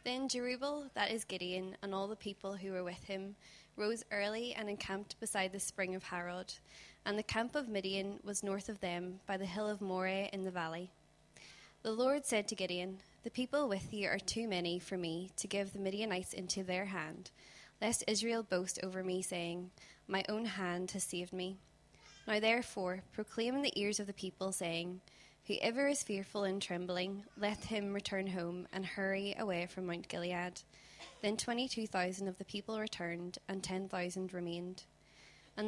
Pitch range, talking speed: 185-210 Hz, 180 wpm